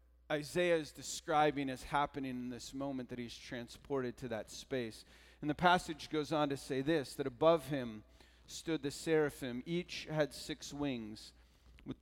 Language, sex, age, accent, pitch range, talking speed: English, male, 40-59, American, 95-140 Hz, 165 wpm